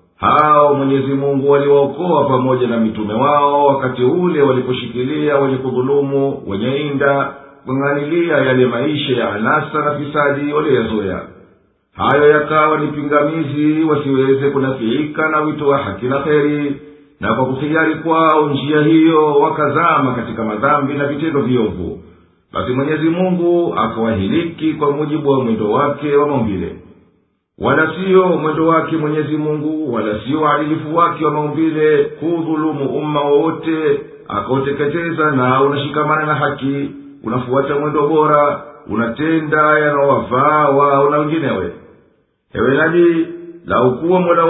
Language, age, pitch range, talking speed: Swahili, 50-69, 140-155 Hz, 120 wpm